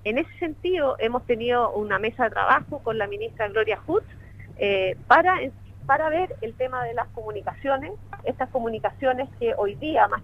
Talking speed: 165 wpm